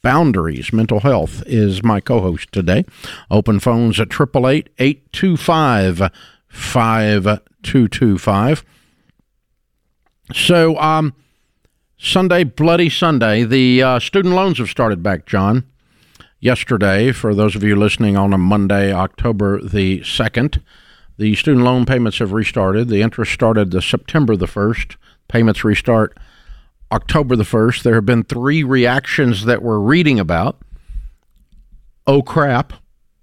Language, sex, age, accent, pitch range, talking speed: English, male, 50-69, American, 100-130 Hz, 115 wpm